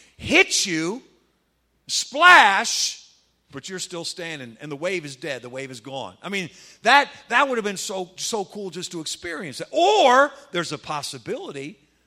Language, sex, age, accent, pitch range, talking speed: English, male, 50-69, American, 175-255 Hz, 170 wpm